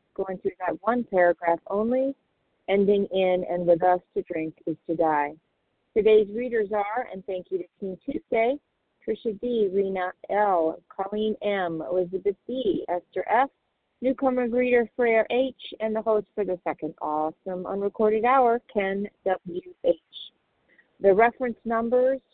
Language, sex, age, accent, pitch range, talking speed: English, female, 40-59, American, 180-225 Hz, 145 wpm